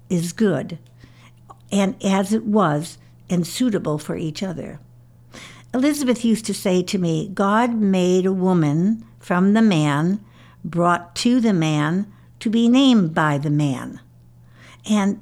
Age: 60-79